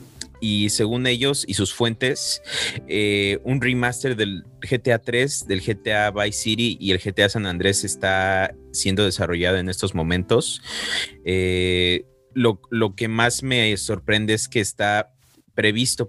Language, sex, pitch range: Spanish, male, 95-115 Hz